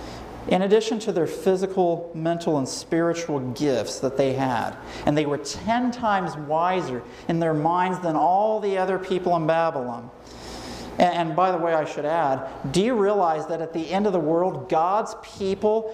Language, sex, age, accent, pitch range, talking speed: English, male, 40-59, American, 180-210 Hz, 180 wpm